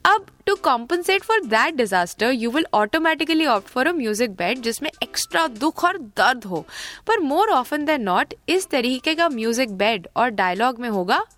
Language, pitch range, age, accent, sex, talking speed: Hindi, 225-335 Hz, 20-39, native, female, 180 wpm